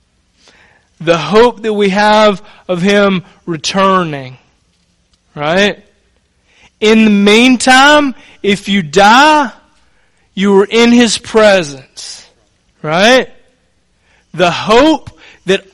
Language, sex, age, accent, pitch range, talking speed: English, male, 30-49, American, 130-200 Hz, 90 wpm